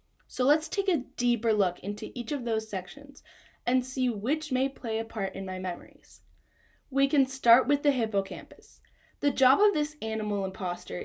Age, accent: 10-29, American